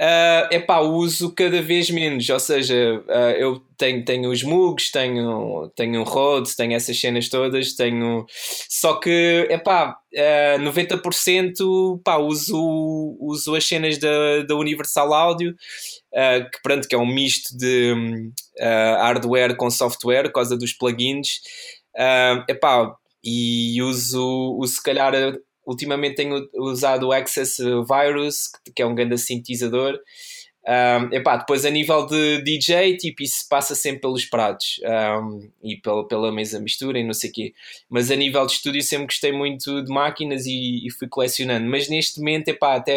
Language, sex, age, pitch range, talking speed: Portuguese, male, 20-39, 125-150 Hz, 160 wpm